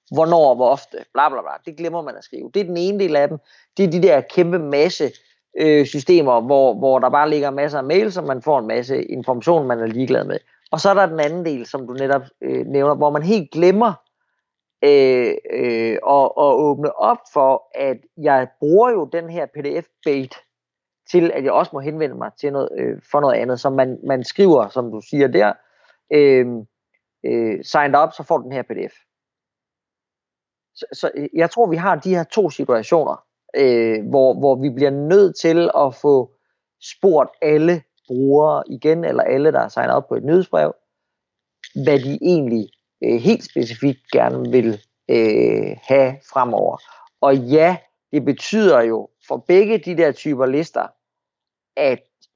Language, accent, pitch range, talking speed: Danish, native, 130-170 Hz, 185 wpm